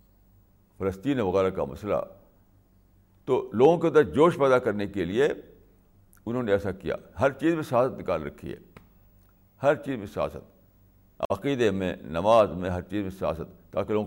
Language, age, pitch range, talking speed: Urdu, 60-79, 95-110 Hz, 160 wpm